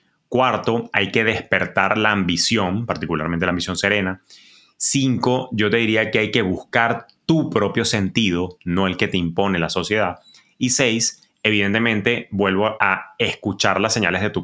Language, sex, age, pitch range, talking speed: Spanish, male, 30-49, 90-110 Hz, 160 wpm